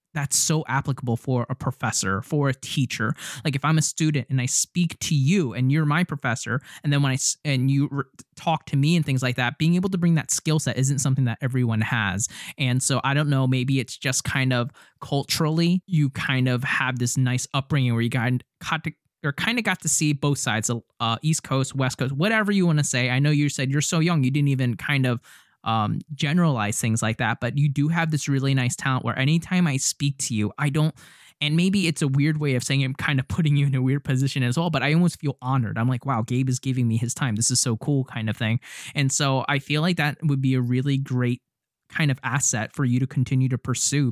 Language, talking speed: English, 240 wpm